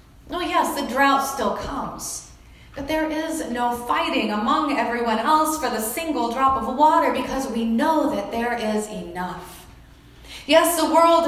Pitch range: 230-295 Hz